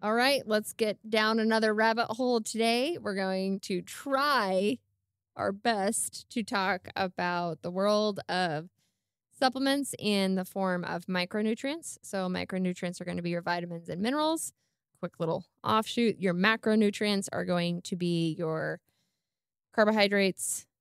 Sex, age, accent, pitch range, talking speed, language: female, 20-39, American, 175-220 Hz, 140 wpm, English